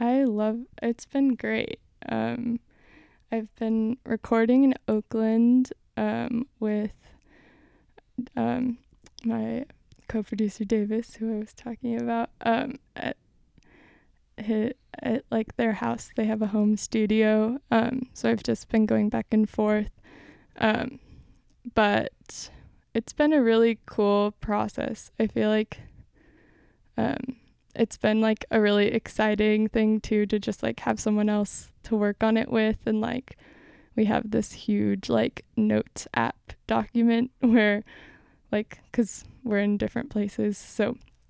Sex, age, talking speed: female, 20-39, 130 wpm